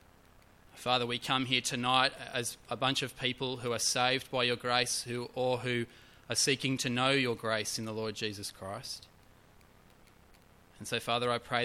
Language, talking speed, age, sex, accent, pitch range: English, 180 wpm, 20-39, male, Australian, 95-120 Hz